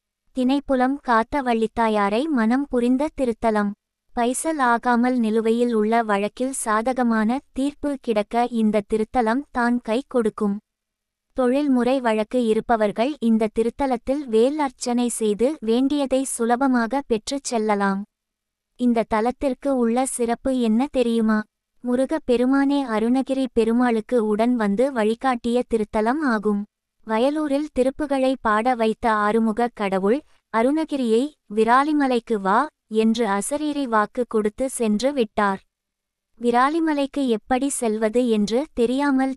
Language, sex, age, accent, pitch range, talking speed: Tamil, female, 20-39, native, 220-260 Hz, 100 wpm